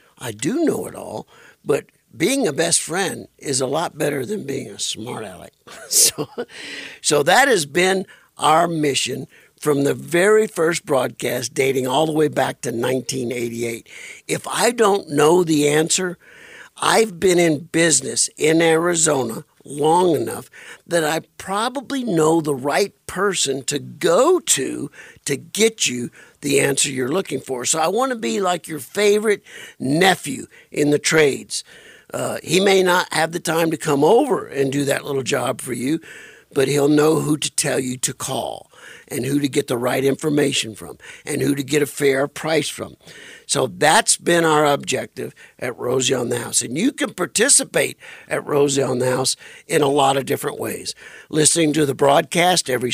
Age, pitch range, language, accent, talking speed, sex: 60-79, 135-175 Hz, English, American, 175 wpm, male